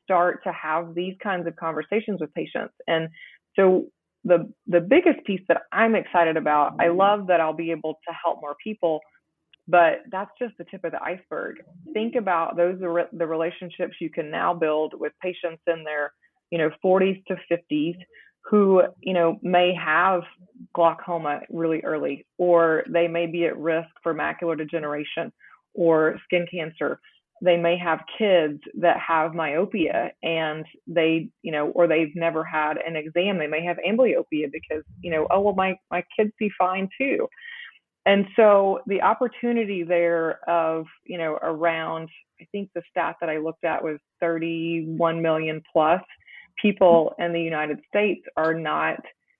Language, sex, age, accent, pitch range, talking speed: English, female, 20-39, American, 160-185 Hz, 165 wpm